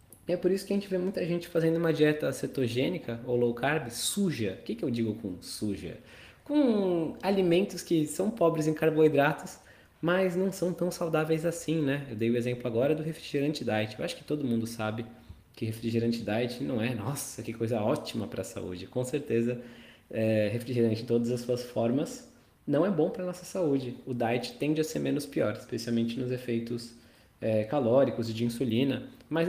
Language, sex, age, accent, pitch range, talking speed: Portuguese, male, 20-39, Brazilian, 115-155 Hz, 195 wpm